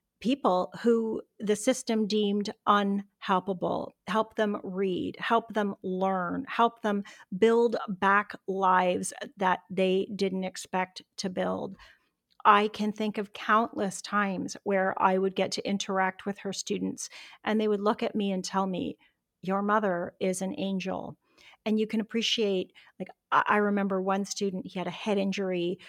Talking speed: 155 wpm